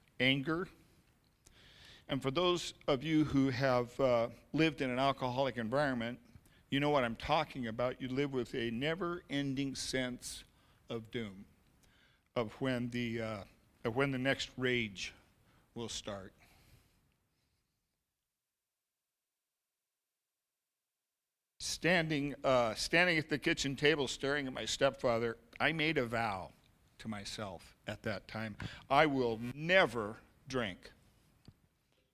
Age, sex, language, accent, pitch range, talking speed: 50-69, male, English, American, 115-150 Hz, 120 wpm